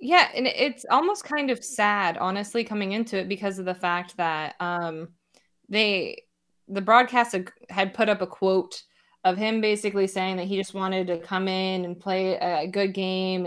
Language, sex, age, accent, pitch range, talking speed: English, female, 20-39, American, 180-205 Hz, 185 wpm